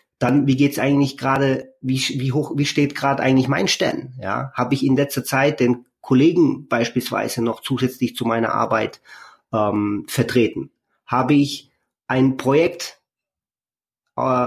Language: German